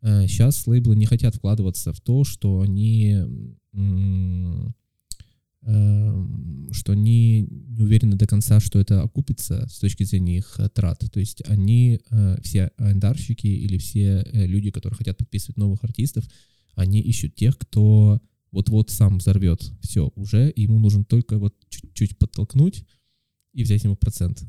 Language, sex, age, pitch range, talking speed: Russian, male, 20-39, 100-115 Hz, 145 wpm